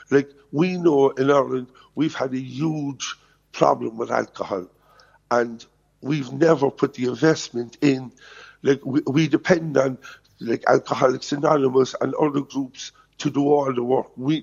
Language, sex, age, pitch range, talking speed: English, male, 50-69, 125-150 Hz, 150 wpm